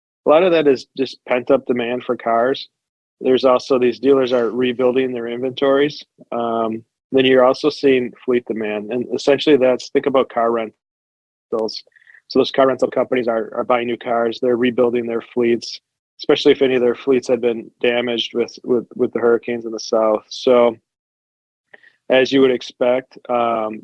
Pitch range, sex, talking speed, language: 115-130 Hz, male, 175 wpm, English